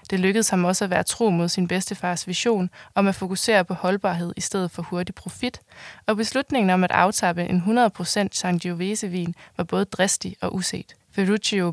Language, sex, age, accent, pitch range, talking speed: Danish, female, 20-39, native, 180-210 Hz, 180 wpm